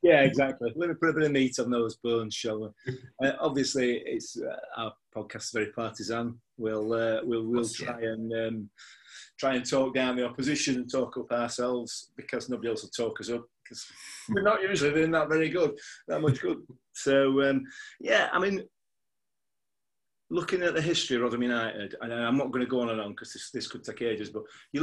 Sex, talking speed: male, 210 wpm